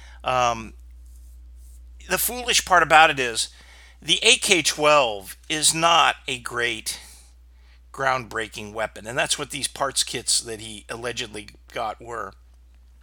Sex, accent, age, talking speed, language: male, American, 50-69, 120 wpm, English